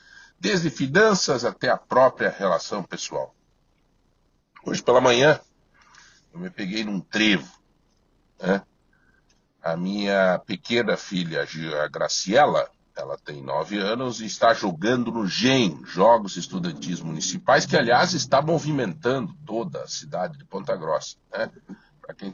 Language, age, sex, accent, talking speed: Portuguese, 60-79, male, Brazilian, 125 wpm